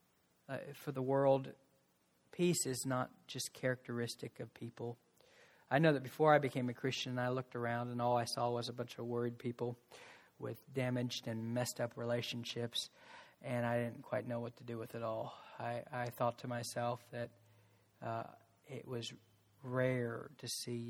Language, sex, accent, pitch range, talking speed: English, male, American, 120-135 Hz, 175 wpm